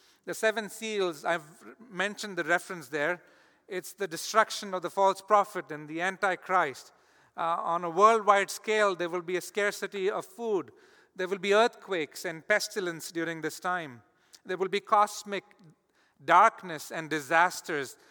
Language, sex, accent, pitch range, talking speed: English, male, Indian, 170-205 Hz, 150 wpm